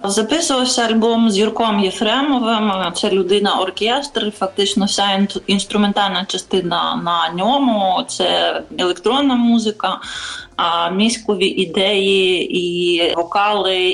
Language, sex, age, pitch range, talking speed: Ukrainian, female, 30-49, 180-215 Hz, 85 wpm